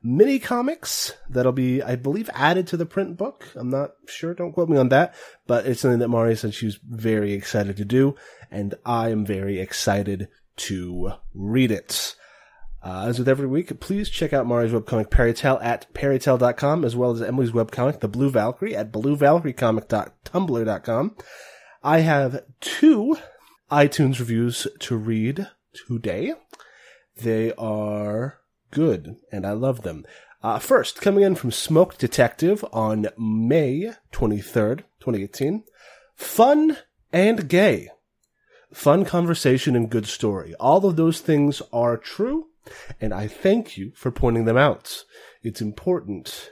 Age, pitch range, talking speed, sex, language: 30-49, 110-150 Hz, 140 wpm, male, English